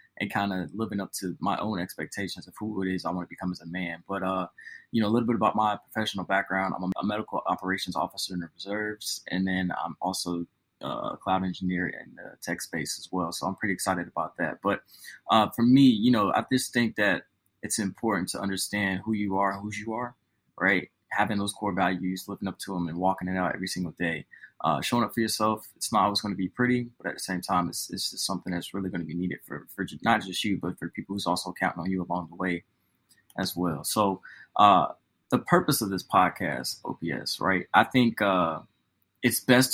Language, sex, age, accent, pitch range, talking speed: English, male, 20-39, American, 90-110 Hz, 235 wpm